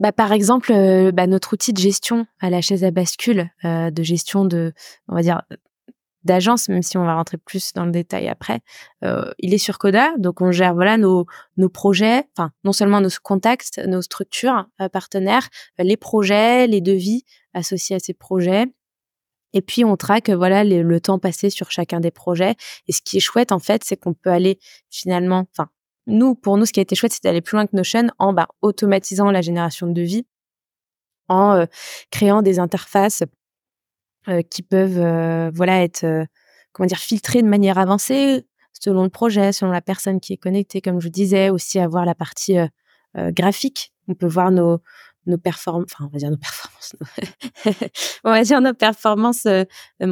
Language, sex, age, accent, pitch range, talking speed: French, female, 20-39, French, 180-210 Hz, 185 wpm